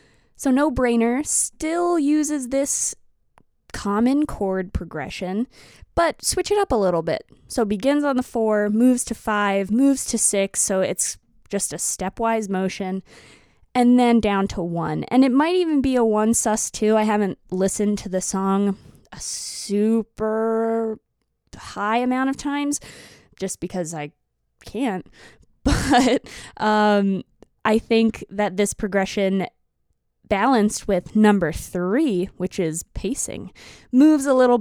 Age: 20-39